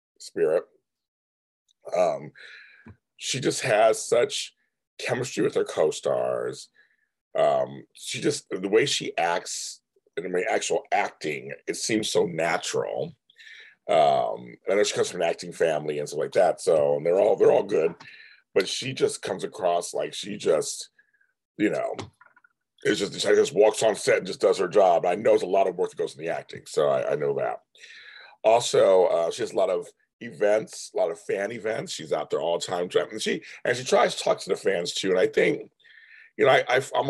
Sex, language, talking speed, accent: male, English, 195 wpm, American